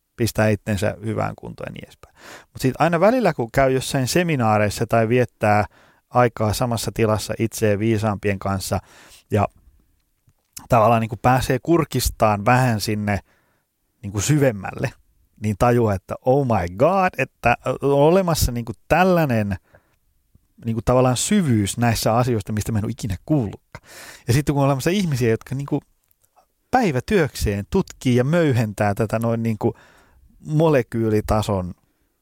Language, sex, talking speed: Finnish, male, 130 wpm